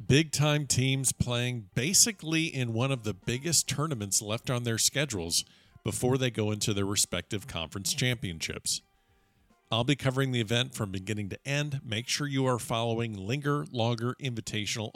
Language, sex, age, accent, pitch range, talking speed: English, male, 50-69, American, 105-135 Hz, 155 wpm